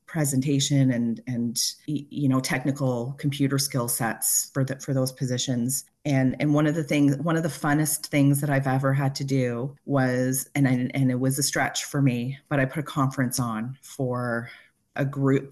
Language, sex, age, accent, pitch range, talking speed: English, female, 30-49, American, 125-145 Hz, 195 wpm